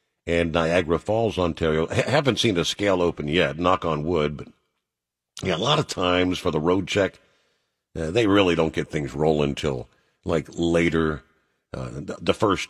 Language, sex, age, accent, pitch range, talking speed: English, male, 50-69, American, 80-110 Hz, 170 wpm